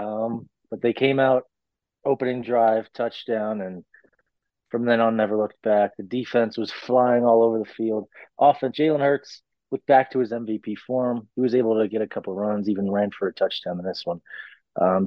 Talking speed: 200 wpm